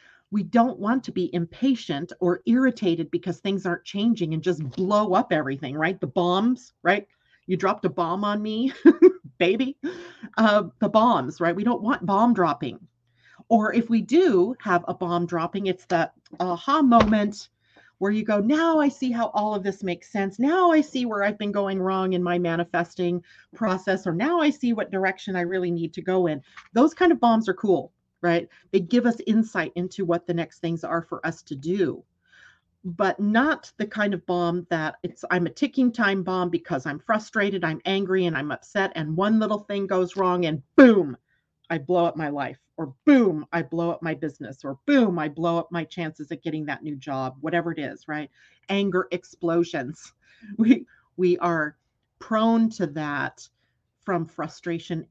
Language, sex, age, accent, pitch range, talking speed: English, female, 40-59, American, 170-215 Hz, 190 wpm